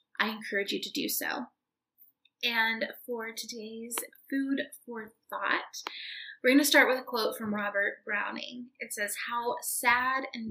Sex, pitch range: female, 225-290 Hz